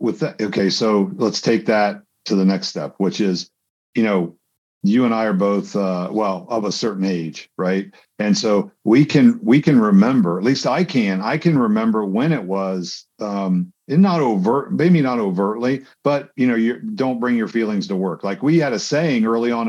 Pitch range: 105-135 Hz